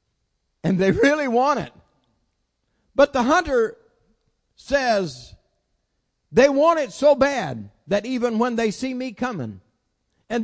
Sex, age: male, 50-69